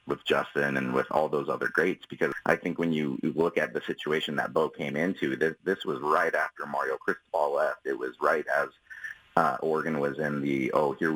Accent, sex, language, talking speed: American, male, English, 215 wpm